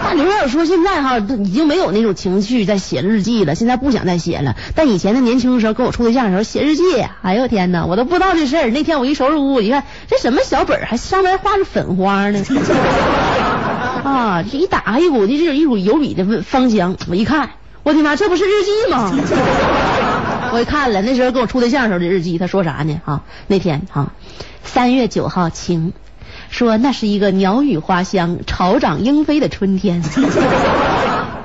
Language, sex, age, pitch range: Chinese, female, 30-49, 195-315 Hz